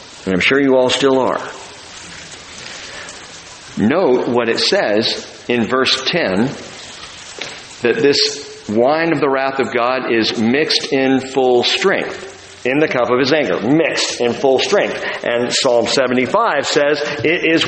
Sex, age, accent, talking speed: male, 50-69, American, 145 wpm